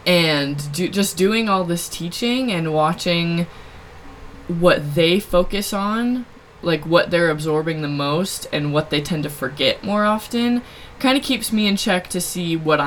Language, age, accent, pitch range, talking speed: English, 20-39, American, 150-180 Hz, 165 wpm